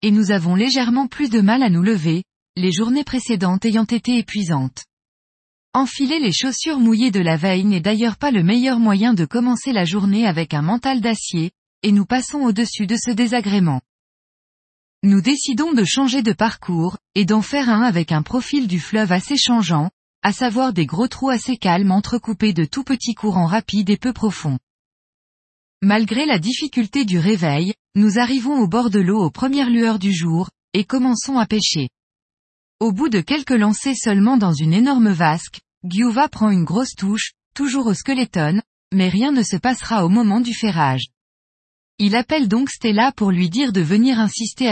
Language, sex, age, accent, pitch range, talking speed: French, female, 20-39, French, 190-250 Hz, 180 wpm